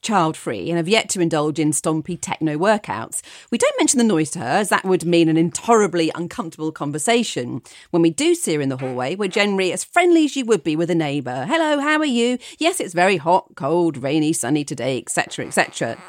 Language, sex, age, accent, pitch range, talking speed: English, female, 40-59, British, 165-275 Hz, 215 wpm